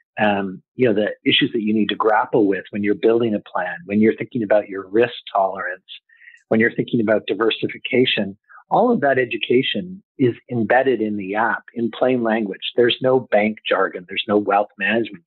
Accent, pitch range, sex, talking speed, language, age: American, 105-130 Hz, male, 190 wpm, English, 50-69